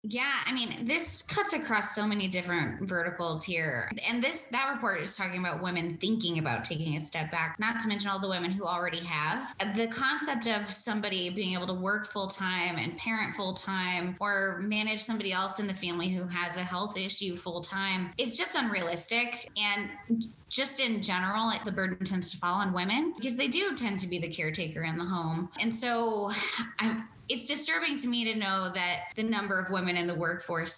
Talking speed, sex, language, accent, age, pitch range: 195 wpm, female, English, American, 20-39, 180-225 Hz